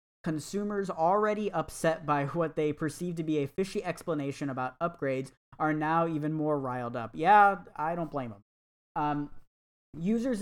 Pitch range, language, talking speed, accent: 140-170 Hz, English, 155 wpm, American